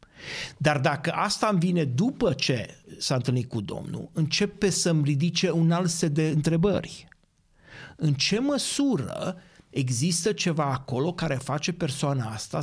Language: Romanian